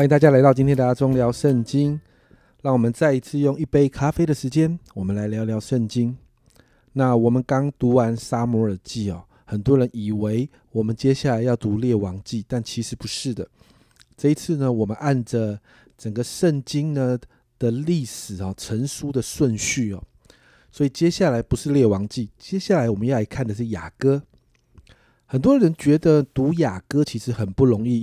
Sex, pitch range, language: male, 115-150 Hz, Chinese